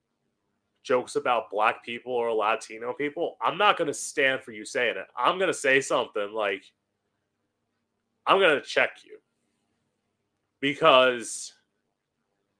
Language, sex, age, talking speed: English, male, 30-49, 135 wpm